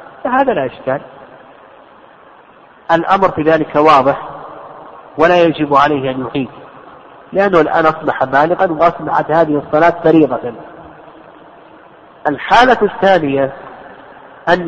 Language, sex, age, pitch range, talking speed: Arabic, male, 50-69, 150-195 Hz, 95 wpm